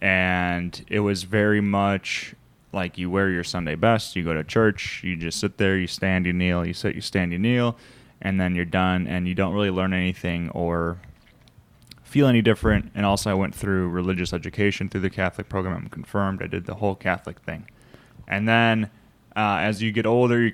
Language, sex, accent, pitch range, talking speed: English, male, American, 90-115 Hz, 205 wpm